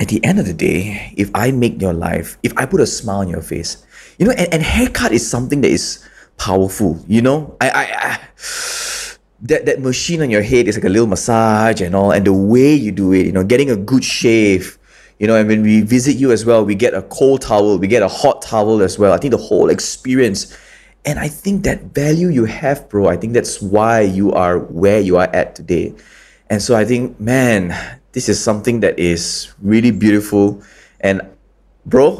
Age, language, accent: 20-39, English, Malaysian